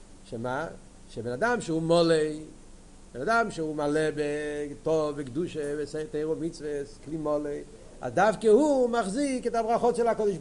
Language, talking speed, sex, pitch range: Hebrew, 125 wpm, male, 155-220 Hz